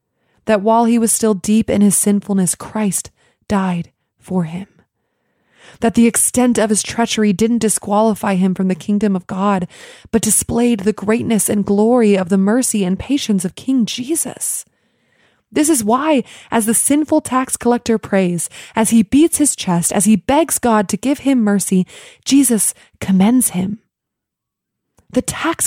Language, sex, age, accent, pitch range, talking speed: English, female, 20-39, American, 190-235 Hz, 160 wpm